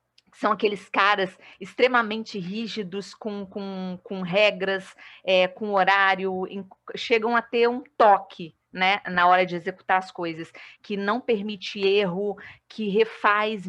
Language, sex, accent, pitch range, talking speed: Portuguese, female, Brazilian, 195-230 Hz, 125 wpm